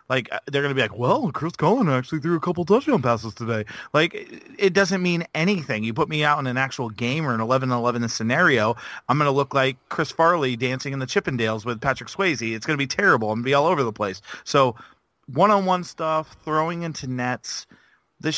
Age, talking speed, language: 30-49, 210 wpm, English